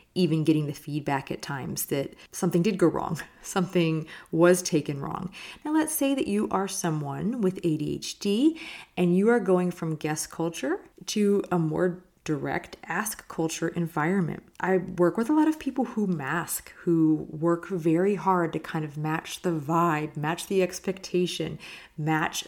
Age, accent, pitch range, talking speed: 30-49, American, 155-195 Hz, 165 wpm